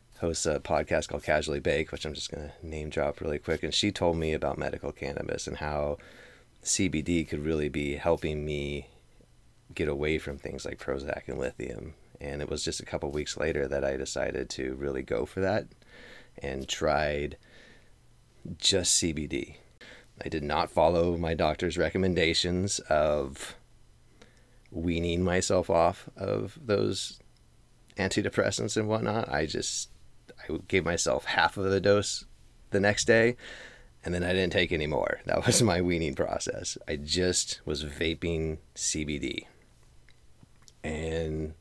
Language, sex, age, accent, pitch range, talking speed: English, male, 30-49, American, 75-90 Hz, 150 wpm